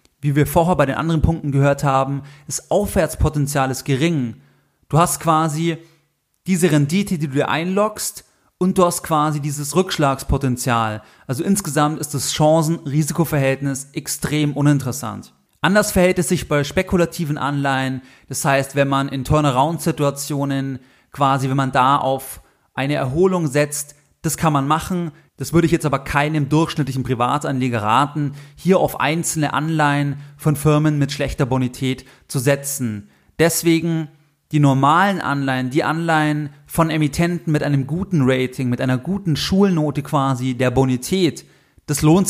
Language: German